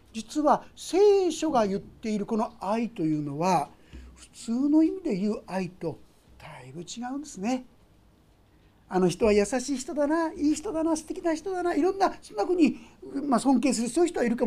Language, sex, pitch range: Japanese, male, 185-275 Hz